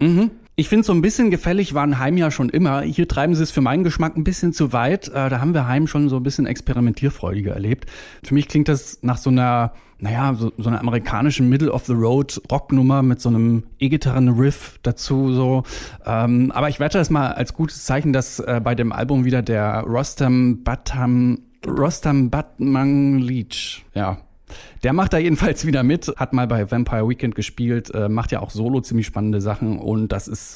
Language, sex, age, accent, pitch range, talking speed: German, male, 10-29, German, 115-145 Hz, 200 wpm